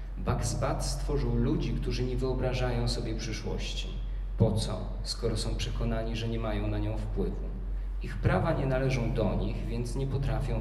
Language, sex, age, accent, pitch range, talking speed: Polish, male, 40-59, native, 105-125 Hz, 160 wpm